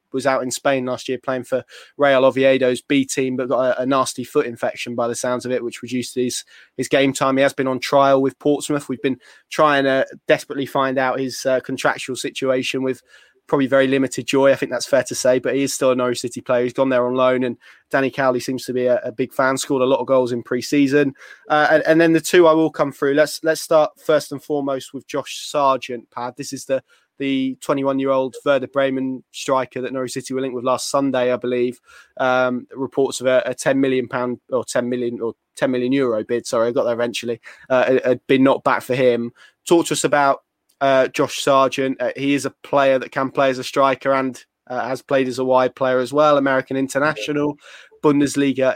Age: 20-39